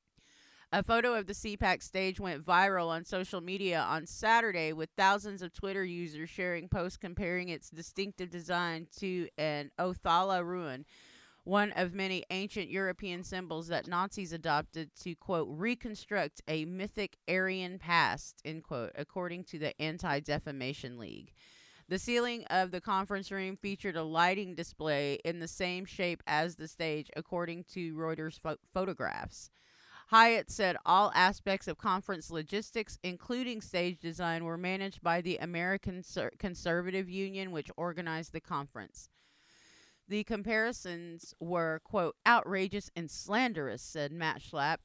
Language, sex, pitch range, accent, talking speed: English, female, 160-195 Hz, American, 140 wpm